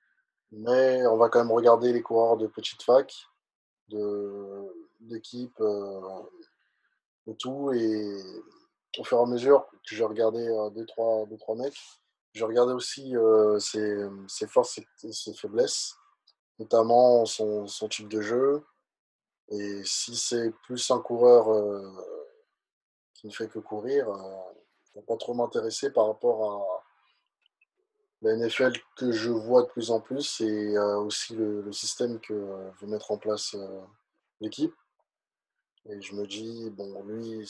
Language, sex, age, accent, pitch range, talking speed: English, male, 20-39, French, 105-125 Hz, 150 wpm